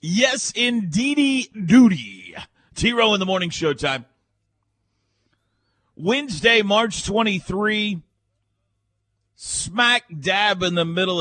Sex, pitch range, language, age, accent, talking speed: male, 105-160 Hz, English, 40-59, American, 90 wpm